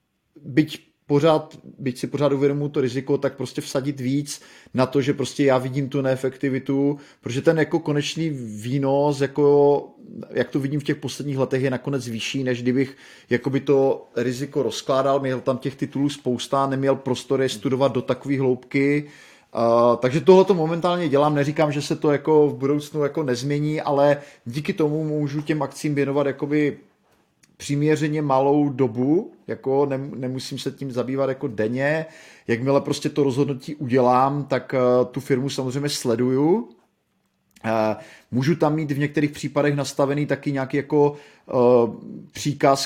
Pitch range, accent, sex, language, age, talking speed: 125-145 Hz, native, male, Czech, 30-49, 155 wpm